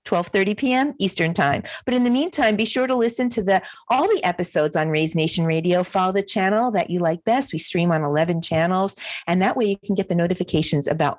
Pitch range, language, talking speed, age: 165-225 Hz, English, 225 wpm, 50-69